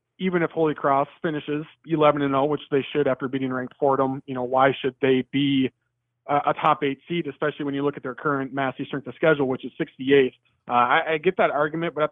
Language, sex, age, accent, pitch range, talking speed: English, male, 20-39, American, 130-150 Hz, 235 wpm